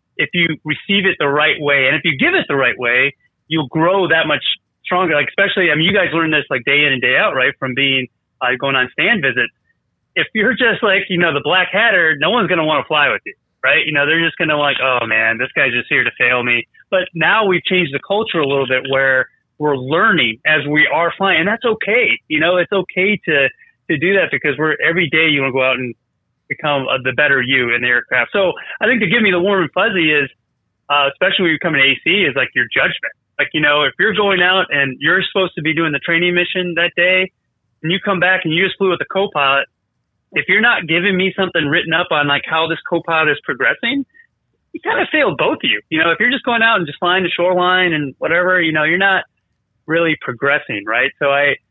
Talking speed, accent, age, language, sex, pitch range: 255 wpm, American, 30-49, English, male, 140-185 Hz